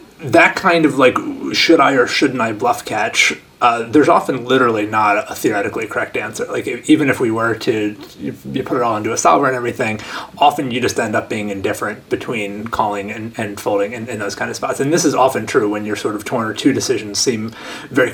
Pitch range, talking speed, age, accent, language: 110-130 Hz, 230 wpm, 30-49, American, English